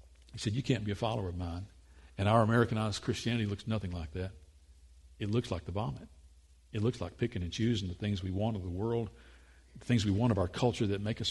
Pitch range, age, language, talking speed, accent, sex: 75-120 Hz, 50-69, English, 240 wpm, American, male